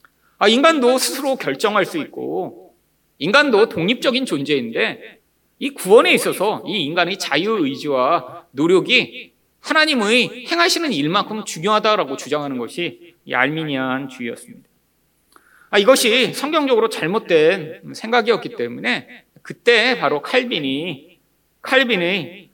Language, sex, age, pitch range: Korean, male, 40-59, 175-285 Hz